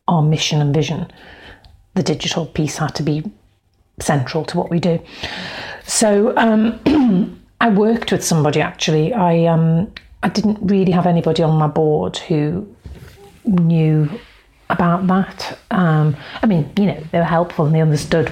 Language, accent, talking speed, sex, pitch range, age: English, British, 155 wpm, female, 150-180 Hz, 40-59